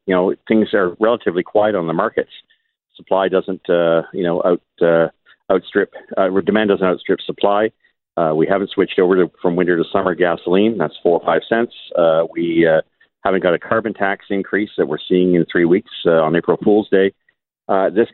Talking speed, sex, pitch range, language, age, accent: 200 wpm, male, 90-110 Hz, English, 50-69, American